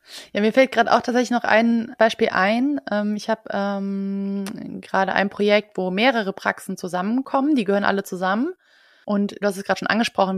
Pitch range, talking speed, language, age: 195-230 Hz, 180 wpm, German, 20-39